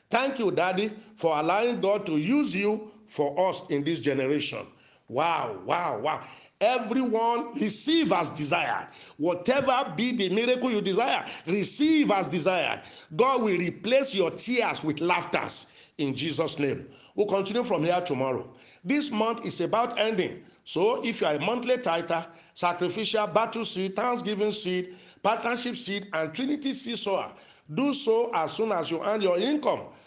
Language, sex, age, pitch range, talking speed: English, male, 50-69, 175-245 Hz, 150 wpm